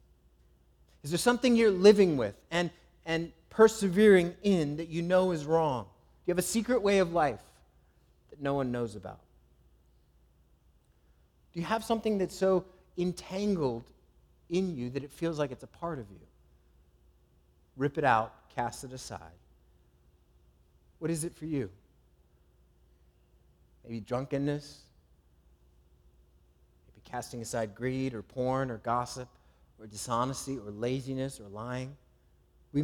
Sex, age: male, 30-49